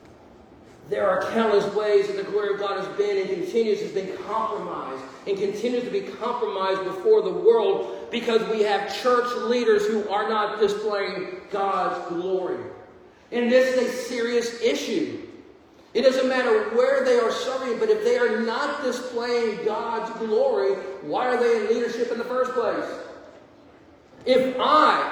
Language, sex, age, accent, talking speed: English, male, 40-59, American, 160 wpm